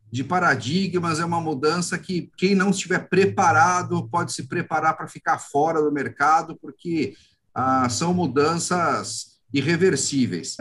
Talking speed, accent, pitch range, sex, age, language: 130 wpm, Brazilian, 140-185 Hz, male, 50-69, Portuguese